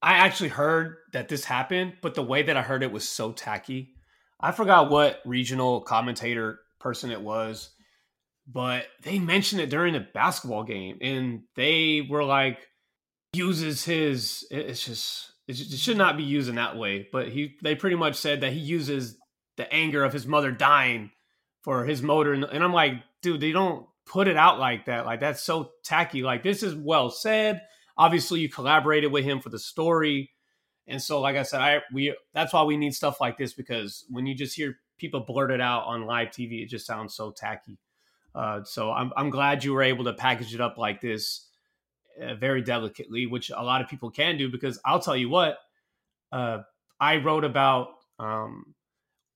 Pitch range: 125-155 Hz